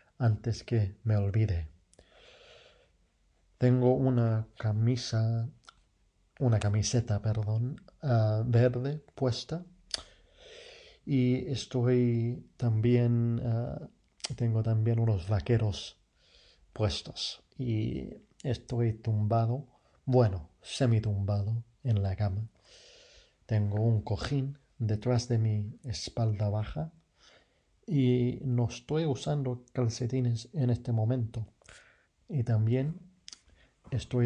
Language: English